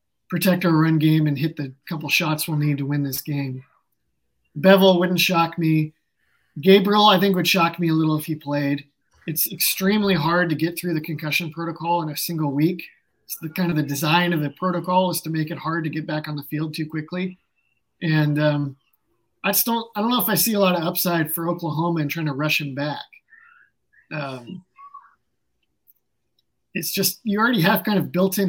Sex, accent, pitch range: male, American, 155-185 Hz